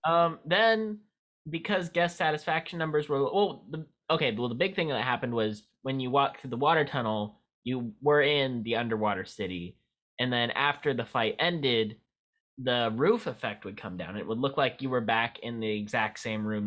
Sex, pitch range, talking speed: male, 115-150 Hz, 190 wpm